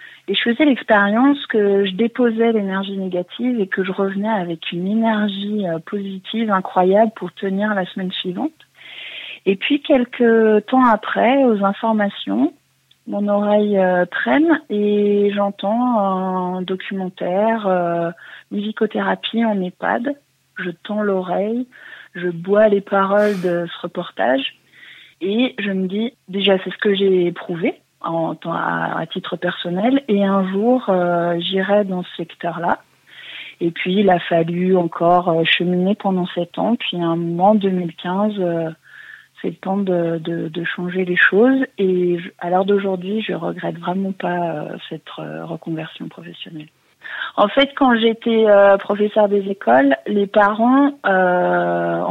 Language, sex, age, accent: French, female, 30-49, French